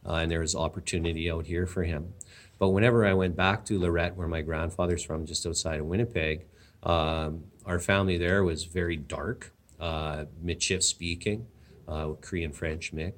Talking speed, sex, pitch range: 175 wpm, male, 80-95 Hz